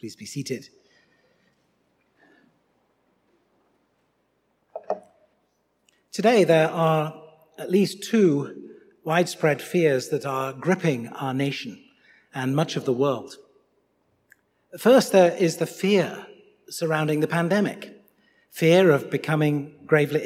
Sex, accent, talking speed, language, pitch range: male, British, 100 wpm, English, 155-230 Hz